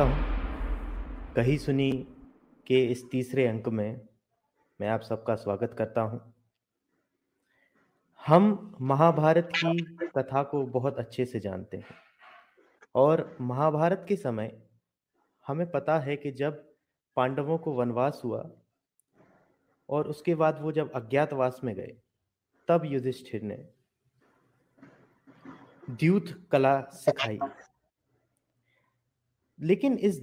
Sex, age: male, 30-49